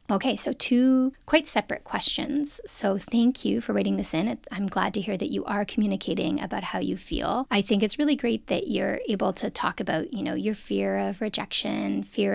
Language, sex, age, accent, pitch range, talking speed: English, female, 30-49, American, 200-260 Hz, 210 wpm